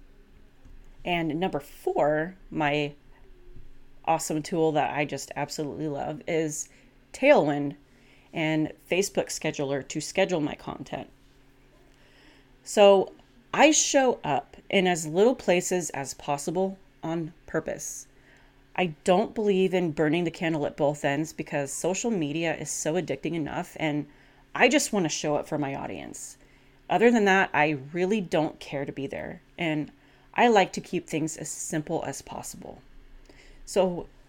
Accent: American